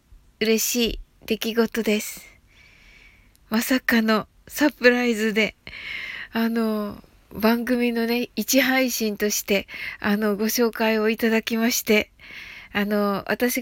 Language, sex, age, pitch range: Japanese, female, 20-39, 190-230 Hz